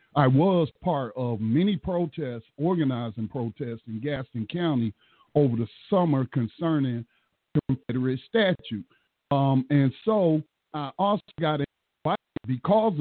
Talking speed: 115 wpm